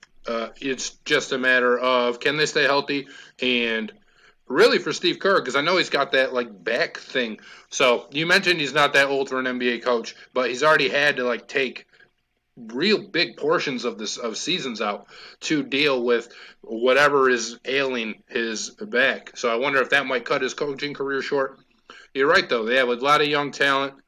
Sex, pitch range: male, 125-150 Hz